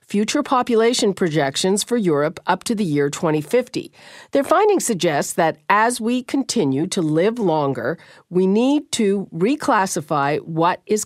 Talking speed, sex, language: 140 wpm, female, English